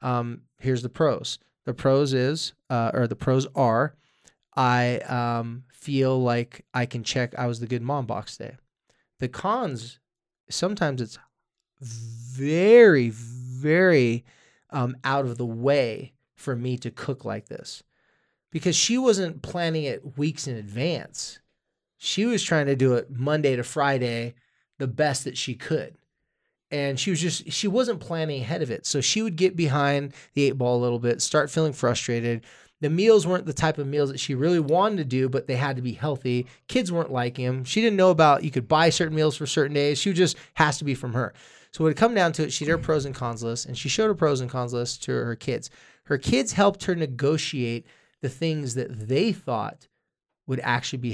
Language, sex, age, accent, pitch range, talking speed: English, male, 20-39, American, 125-155 Hz, 200 wpm